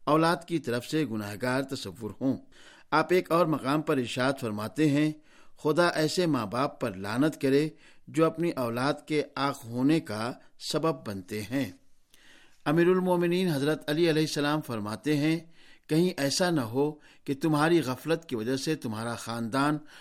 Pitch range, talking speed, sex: 130-160 Hz, 155 wpm, male